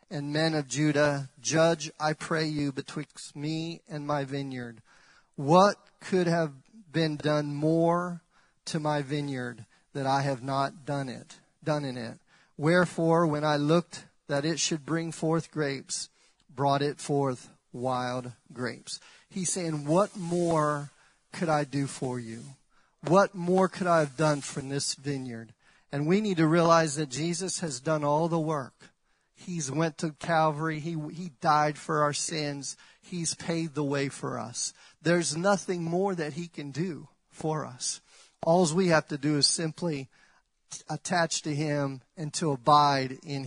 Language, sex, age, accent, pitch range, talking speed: English, male, 40-59, American, 145-170 Hz, 160 wpm